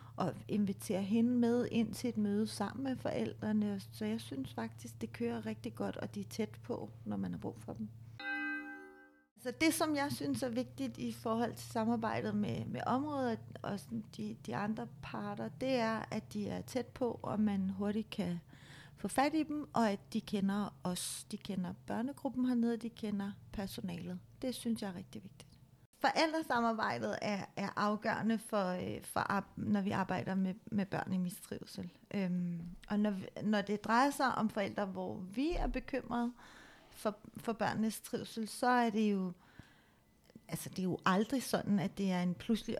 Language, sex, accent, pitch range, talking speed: Danish, female, native, 175-225 Hz, 180 wpm